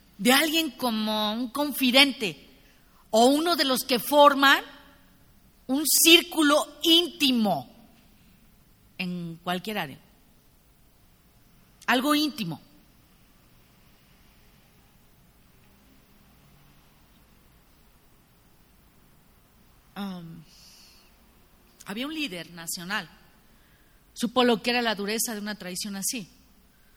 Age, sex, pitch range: 40-59, female, 165-245 Hz